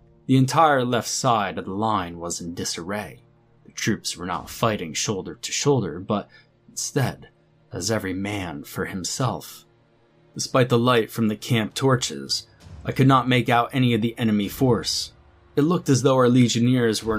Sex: male